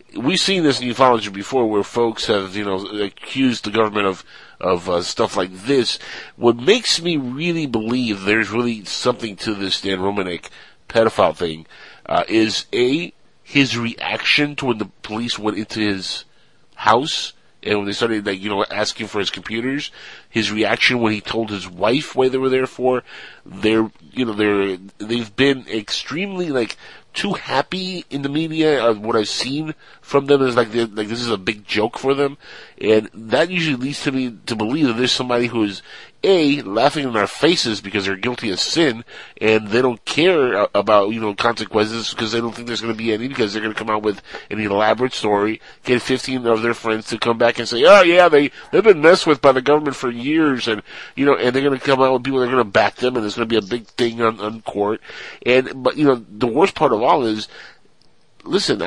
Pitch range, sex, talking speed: 105-130 Hz, male, 215 wpm